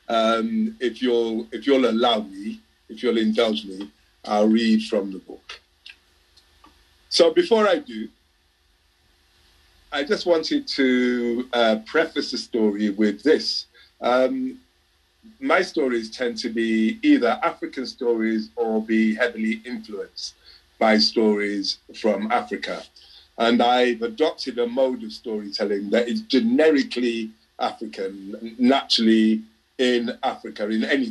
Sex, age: male, 50-69